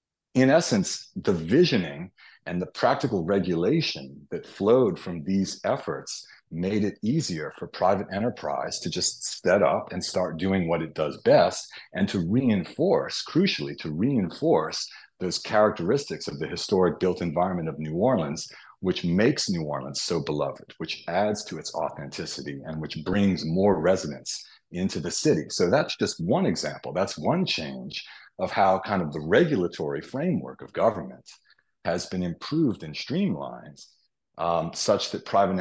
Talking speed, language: 155 wpm, English